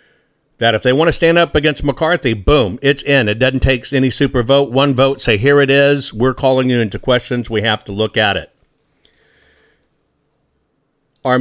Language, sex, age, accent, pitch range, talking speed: English, male, 50-69, American, 110-140 Hz, 190 wpm